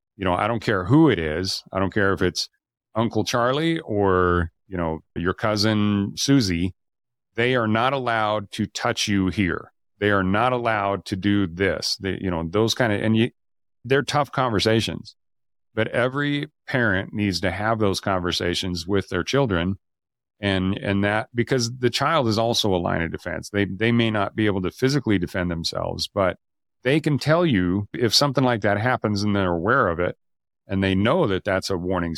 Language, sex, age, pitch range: English, male, 40-59, 90-115 Hz